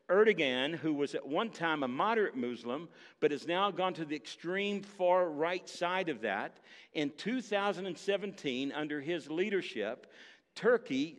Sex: male